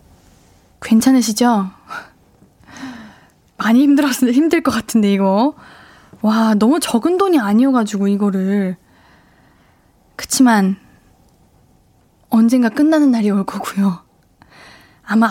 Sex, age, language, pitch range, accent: female, 20-39, Korean, 220-300 Hz, native